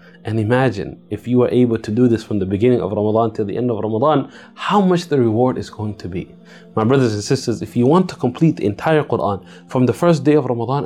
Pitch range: 105-145 Hz